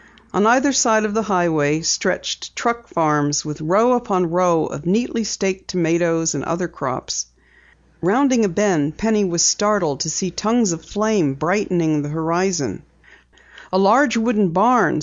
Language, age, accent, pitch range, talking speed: English, 50-69, American, 165-220 Hz, 150 wpm